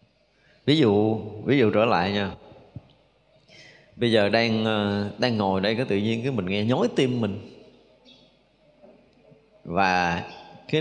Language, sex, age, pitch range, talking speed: Vietnamese, male, 20-39, 110-155 Hz, 135 wpm